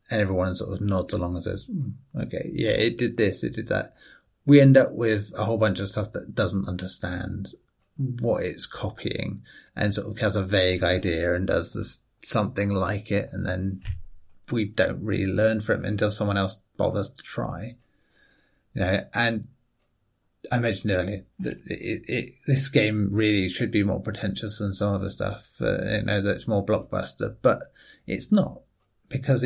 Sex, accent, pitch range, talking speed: male, British, 95-115 Hz, 185 wpm